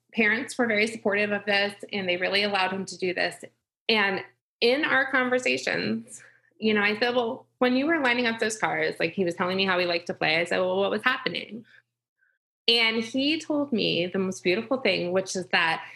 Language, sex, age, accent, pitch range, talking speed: English, female, 20-39, American, 190-250 Hz, 215 wpm